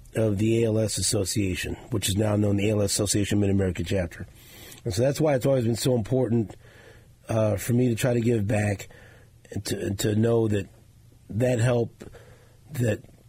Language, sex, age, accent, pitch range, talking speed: English, male, 40-59, American, 110-125 Hz, 180 wpm